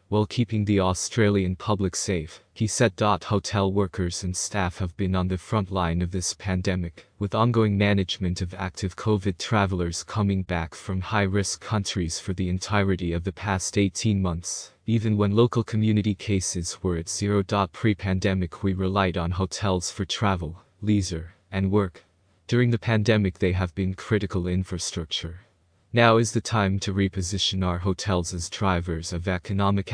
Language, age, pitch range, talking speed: English, 20-39, 90-105 Hz, 160 wpm